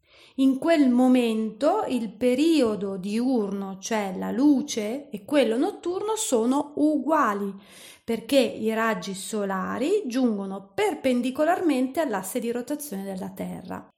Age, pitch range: 30-49, 225-305 Hz